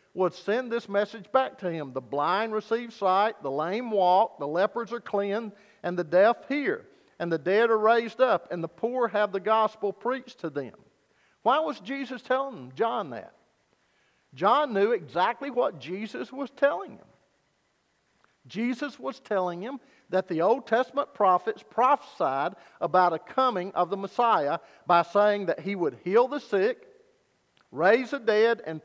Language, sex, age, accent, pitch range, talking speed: English, male, 50-69, American, 175-240 Hz, 165 wpm